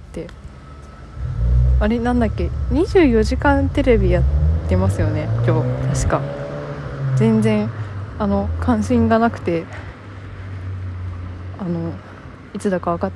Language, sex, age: Japanese, female, 20-39